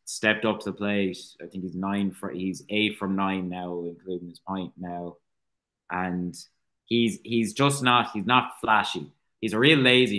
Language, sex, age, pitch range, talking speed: English, male, 20-39, 90-105 Hz, 185 wpm